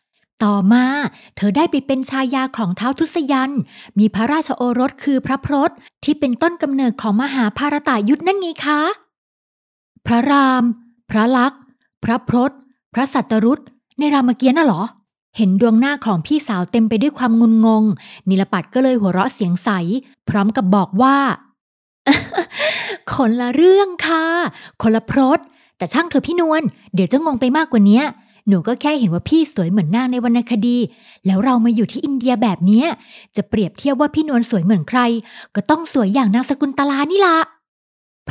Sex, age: female, 20-39